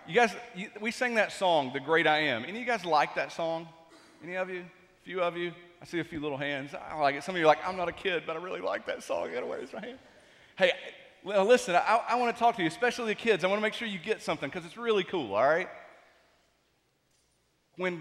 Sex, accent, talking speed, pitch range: male, American, 275 wpm, 170-245 Hz